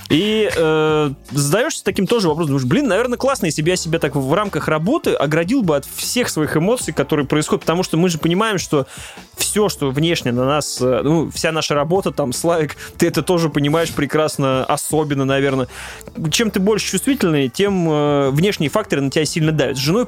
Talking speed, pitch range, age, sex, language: 195 wpm, 140-185 Hz, 20-39, male, Russian